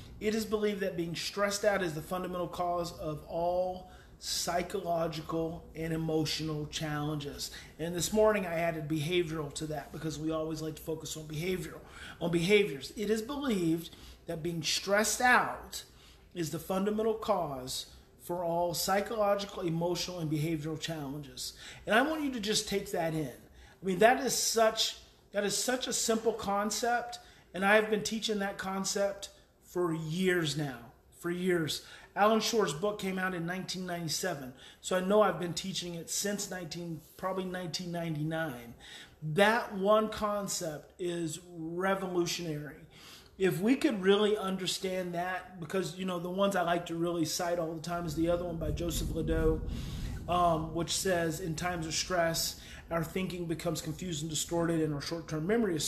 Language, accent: English, American